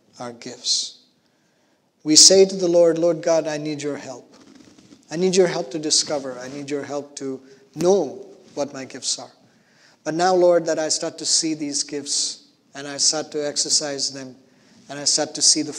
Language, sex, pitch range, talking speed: English, male, 145-165 Hz, 195 wpm